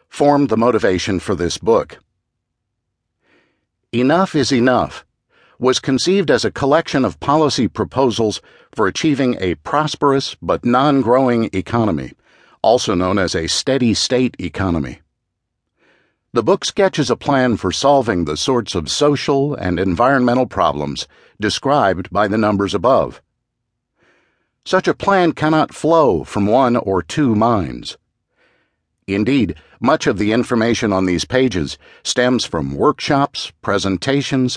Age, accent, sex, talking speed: 50-69, American, male, 125 wpm